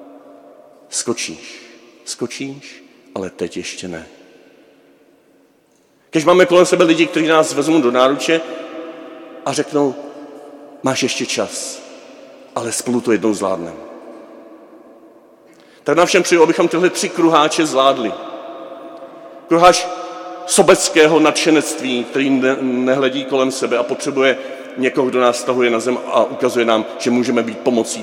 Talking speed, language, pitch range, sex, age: 125 wpm, Czech, 125-155 Hz, male, 40-59